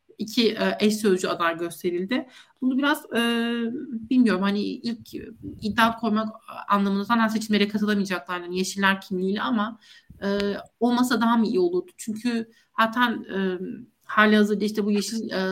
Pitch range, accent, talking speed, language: 200-240 Hz, native, 135 wpm, Turkish